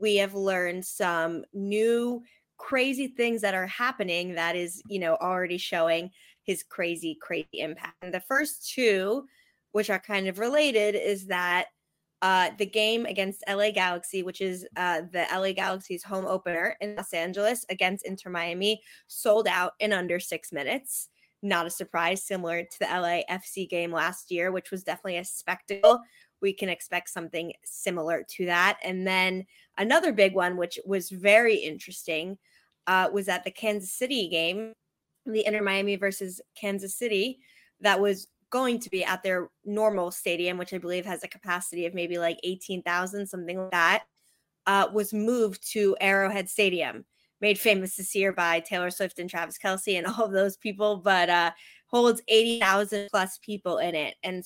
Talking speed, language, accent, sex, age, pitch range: 165 wpm, English, American, female, 20-39, 180-210 Hz